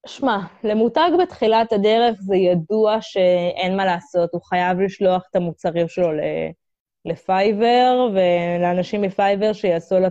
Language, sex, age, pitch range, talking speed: Hebrew, female, 20-39, 170-195 Hz, 125 wpm